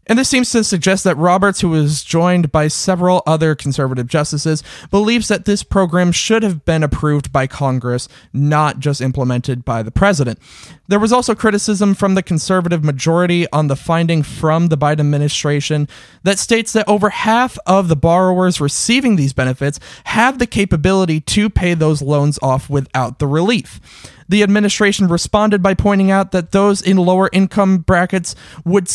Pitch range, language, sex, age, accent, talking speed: 145-200 Hz, English, male, 20-39, American, 170 wpm